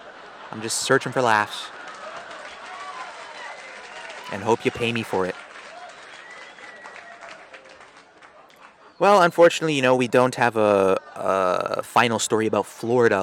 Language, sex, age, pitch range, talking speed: English, male, 30-49, 115-165 Hz, 115 wpm